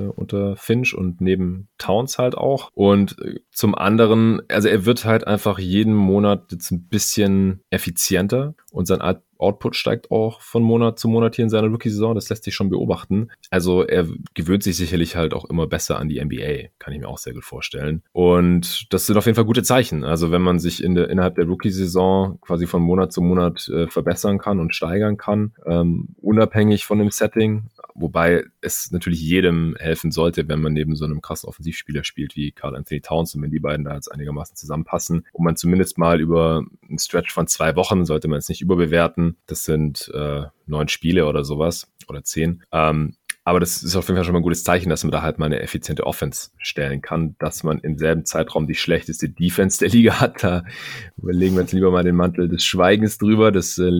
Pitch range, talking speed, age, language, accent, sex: 80-100 Hz, 210 wpm, 20-39, German, German, male